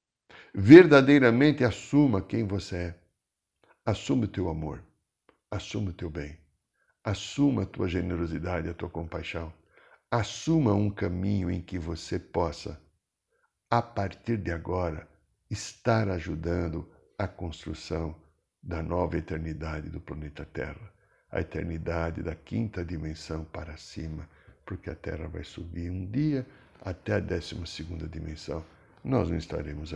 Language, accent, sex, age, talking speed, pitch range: Portuguese, Brazilian, male, 60-79, 125 wpm, 80-110 Hz